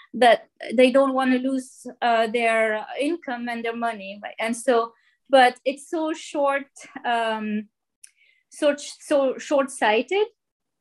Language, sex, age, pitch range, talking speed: English, female, 20-39, 240-290 Hz, 135 wpm